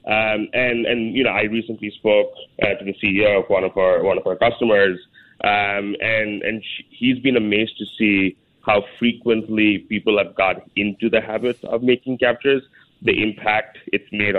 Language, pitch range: English, 105-130 Hz